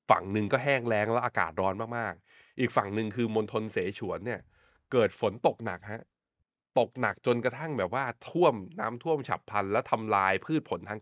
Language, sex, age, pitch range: Thai, male, 20-39, 100-120 Hz